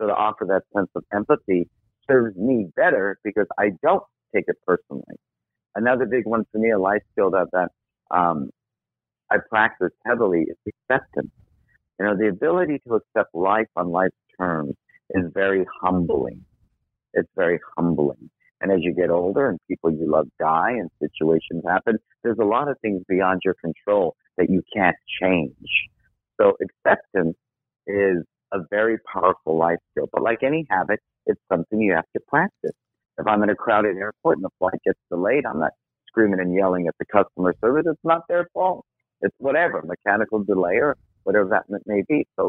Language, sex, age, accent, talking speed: English, male, 50-69, American, 175 wpm